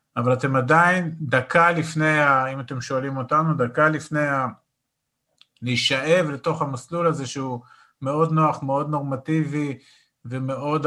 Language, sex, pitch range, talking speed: Hebrew, male, 130-160 Hz, 125 wpm